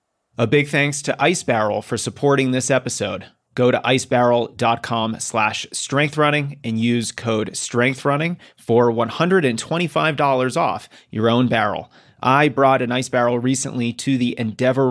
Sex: male